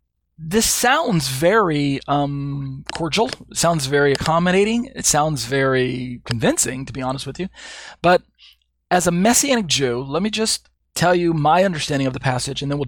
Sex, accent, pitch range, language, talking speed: male, American, 130-170 Hz, English, 165 wpm